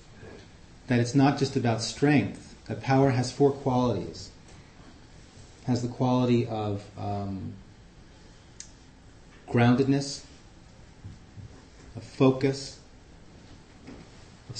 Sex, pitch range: male, 100-130 Hz